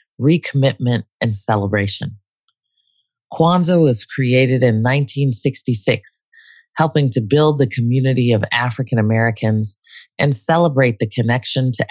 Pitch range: 115-140 Hz